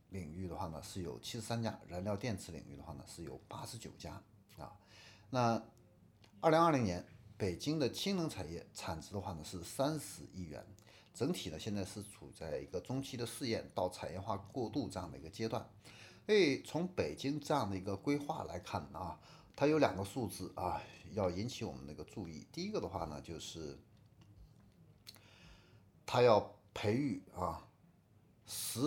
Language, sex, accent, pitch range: Chinese, male, native, 90-115 Hz